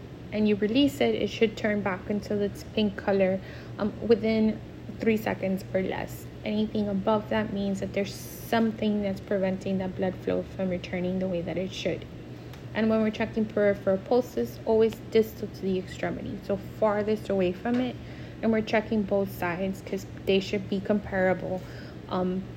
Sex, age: female, 20-39